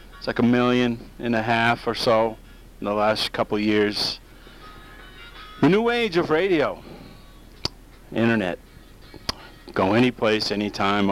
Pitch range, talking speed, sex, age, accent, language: 105-125 Hz, 135 wpm, male, 50-69, American, English